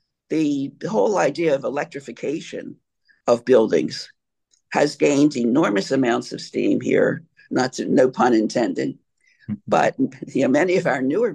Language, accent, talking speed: English, American, 135 wpm